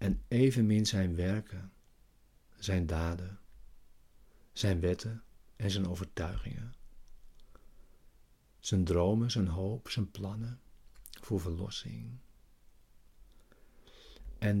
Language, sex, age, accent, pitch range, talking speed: Dutch, male, 60-79, Dutch, 95-110 Hz, 80 wpm